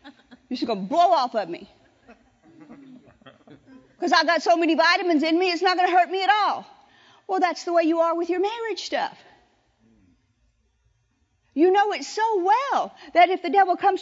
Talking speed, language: 190 wpm, English